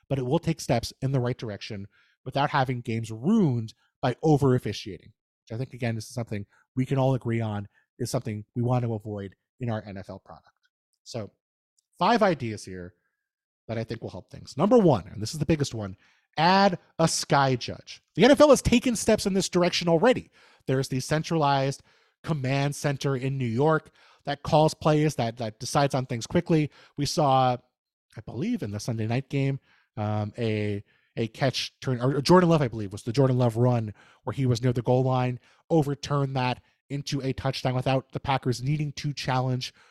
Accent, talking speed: American, 190 wpm